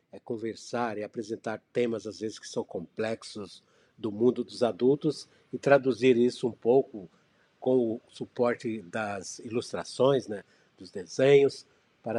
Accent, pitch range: Brazilian, 110-130 Hz